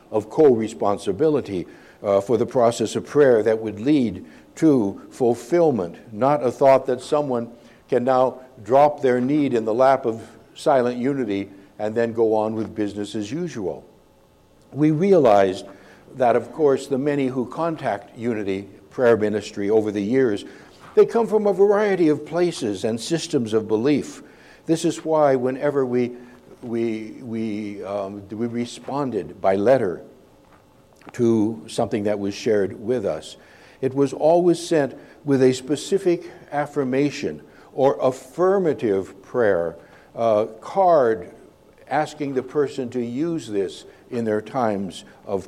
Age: 60-79